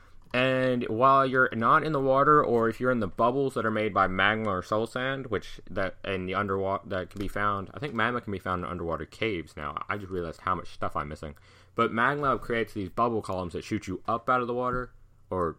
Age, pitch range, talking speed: 30-49, 95-125 Hz, 245 wpm